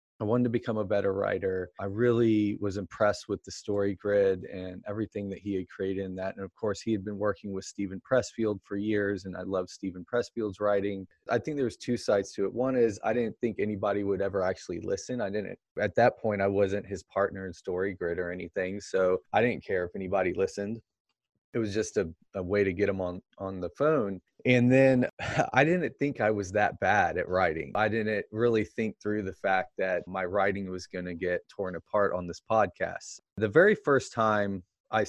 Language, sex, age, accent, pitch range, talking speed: English, male, 20-39, American, 95-115 Hz, 220 wpm